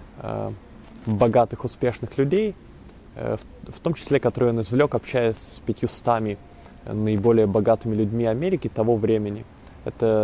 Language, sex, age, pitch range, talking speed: Russian, male, 20-39, 105-125 Hz, 110 wpm